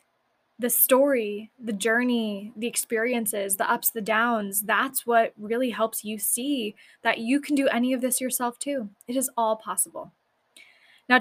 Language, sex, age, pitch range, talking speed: English, female, 10-29, 205-255 Hz, 160 wpm